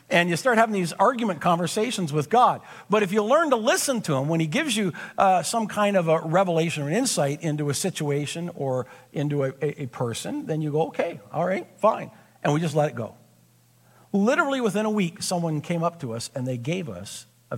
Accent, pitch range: American, 125-215 Hz